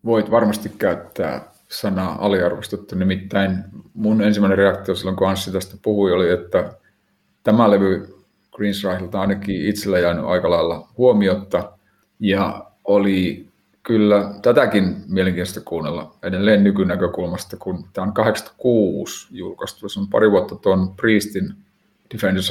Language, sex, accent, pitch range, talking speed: Finnish, male, native, 95-110 Hz, 125 wpm